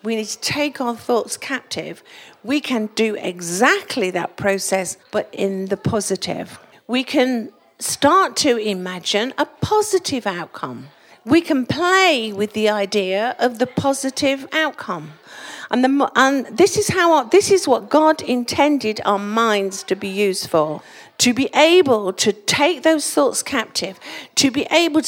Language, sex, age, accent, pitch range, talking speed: English, female, 50-69, British, 215-310 Hz, 155 wpm